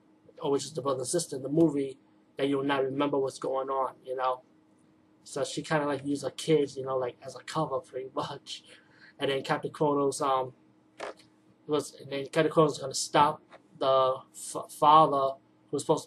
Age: 20-39